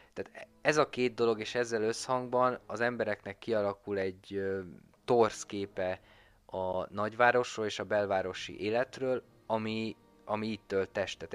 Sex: male